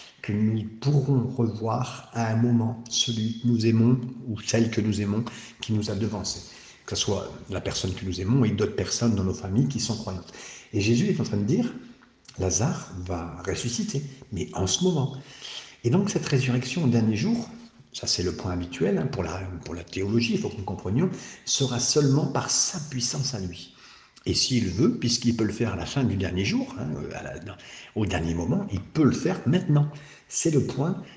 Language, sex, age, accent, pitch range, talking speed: French, male, 60-79, French, 95-125 Hz, 200 wpm